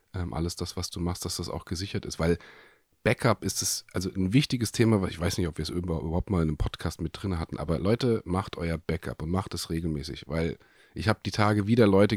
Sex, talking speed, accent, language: male, 235 wpm, German, German